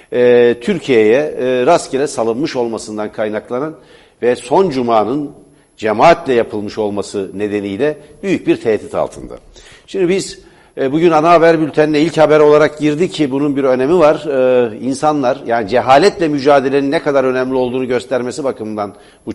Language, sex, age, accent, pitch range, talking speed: Turkish, male, 60-79, native, 115-150 Hz, 130 wpm